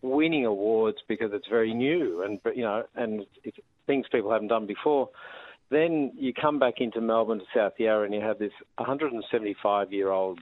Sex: male